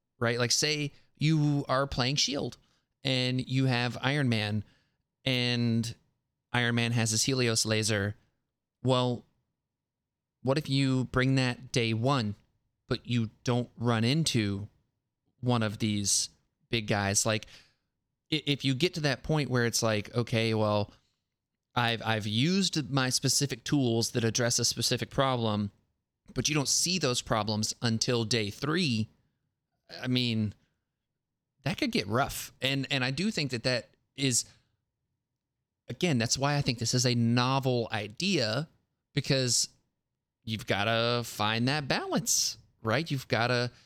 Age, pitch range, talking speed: 20-39, 115-135 Hz, 140 wpm